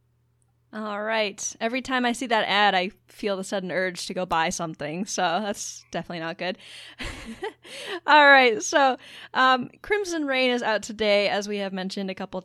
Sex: female